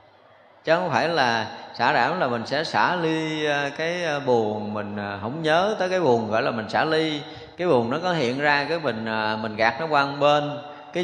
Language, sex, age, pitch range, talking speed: Vietnamese, male, 20-39, 115-160 Hz, 205 wpm